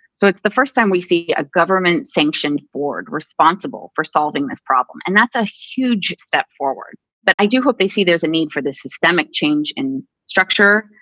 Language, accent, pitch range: English, American, 170-235 Hz